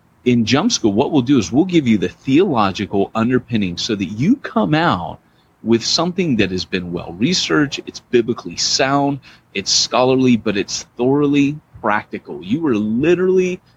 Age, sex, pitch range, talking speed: 30-49, male, 95-125 Hz, 160 wpm